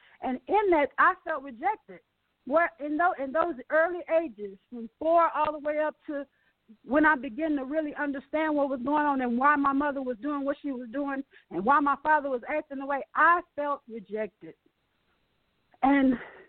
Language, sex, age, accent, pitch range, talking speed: English, female, 40-59, American, 250-305 Hz, 180 wpm